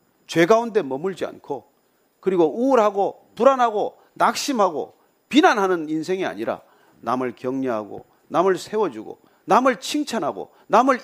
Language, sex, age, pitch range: Korean, male, 40-59, 160-230 Hz